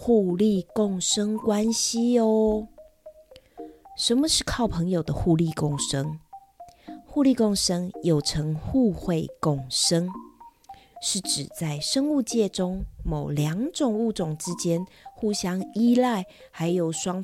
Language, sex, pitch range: Chinese, female, 175-260 Hz